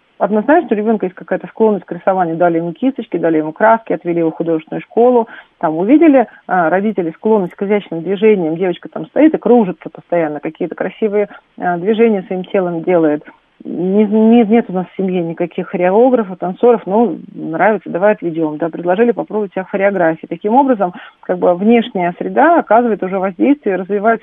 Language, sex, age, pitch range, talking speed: Russian, female, 40-59, 180-235 Hz, 160 wpm